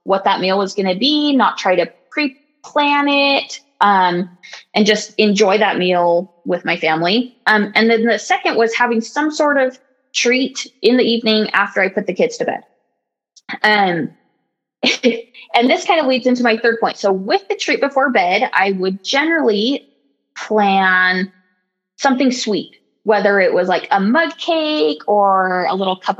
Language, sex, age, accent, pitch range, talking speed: English, female, 20-39, American, 195-270 Hz, 170 wpm